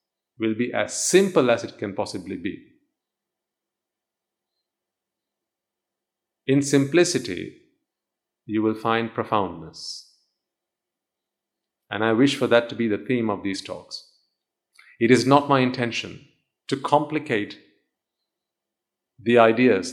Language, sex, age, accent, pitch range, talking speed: English, male, 40-59, Indian, 110-135 Hz, 110 wpm